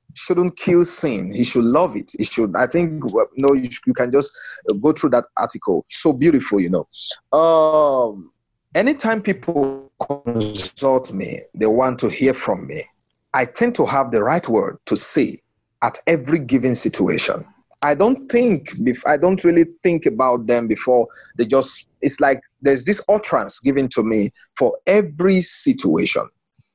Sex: male